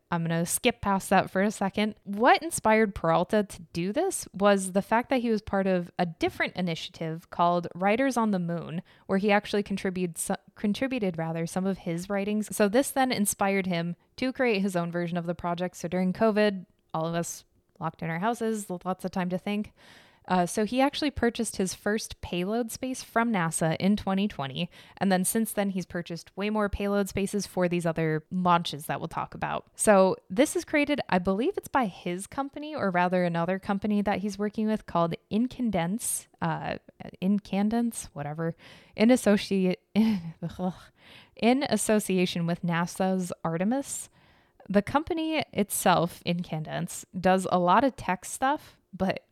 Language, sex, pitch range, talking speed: English, female, 175-215 Hz, 170 wpm